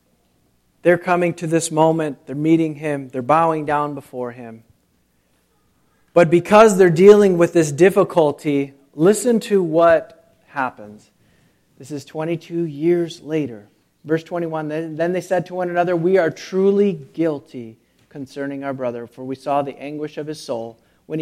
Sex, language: male, English